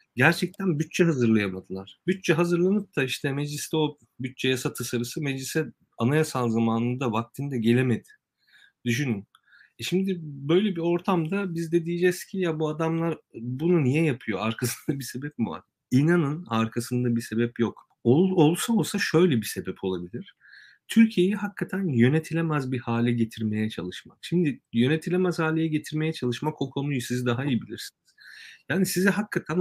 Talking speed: 140 wpm